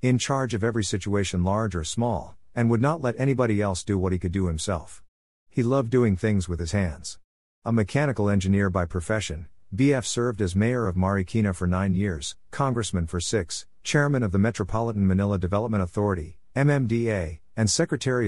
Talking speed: 175 wpm